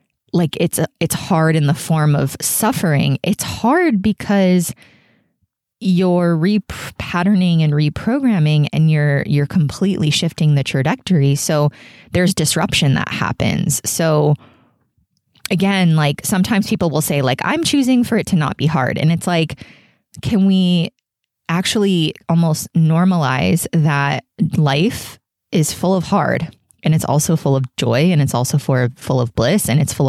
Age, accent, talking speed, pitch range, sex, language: 20-39, American, 150 wpm, 145-180 Hz, female, English